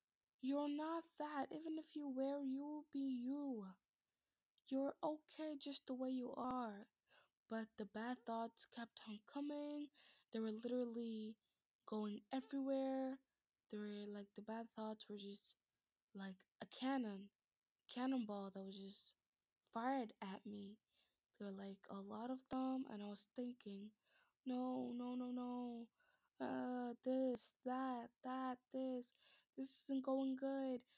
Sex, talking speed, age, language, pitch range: female, 140 wpm, 20-39, English, 220-265 Hz